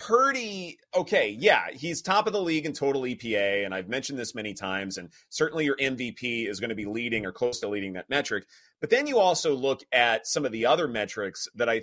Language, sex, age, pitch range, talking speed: English, male, 30-49, 130-215 Hz, 230 wpm